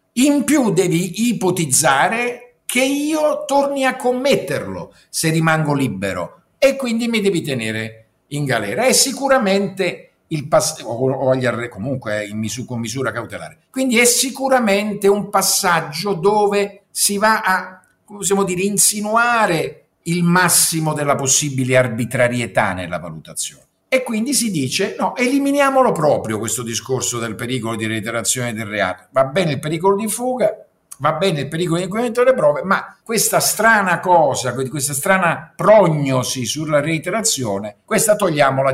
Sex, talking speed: male, 145 wpm